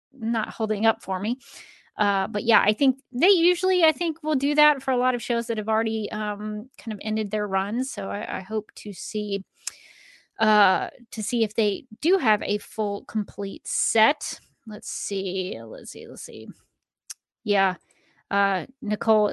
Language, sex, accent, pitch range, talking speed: English, female, American, 210-245 Hz, 175 wpm